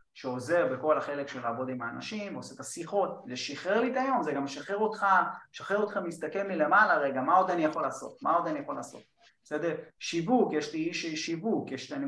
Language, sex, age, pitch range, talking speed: Hebrew, male, 30-49, 130-200 Hz, 210 wpm